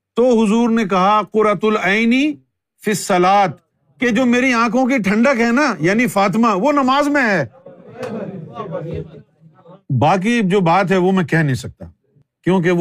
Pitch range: 135-200 Hz